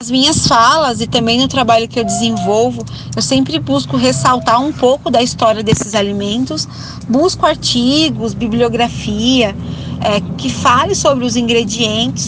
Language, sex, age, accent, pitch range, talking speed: Portuguese, female, 20-39, Brazilian, 215-270 Hz, 140 wpm